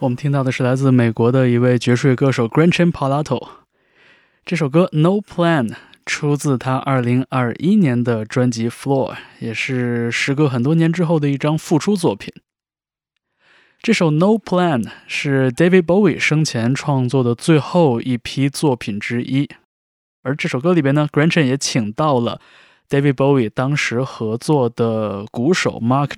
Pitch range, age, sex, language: 120-155 Hz, 20-39, male, Chinese